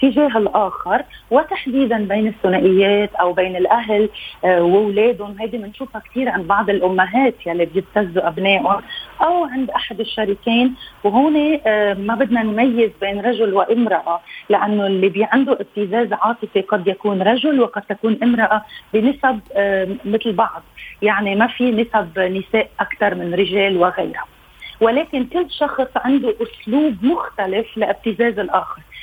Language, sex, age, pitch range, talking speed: Arabic, female, 30-49, 205-260 Hz, 135 wpm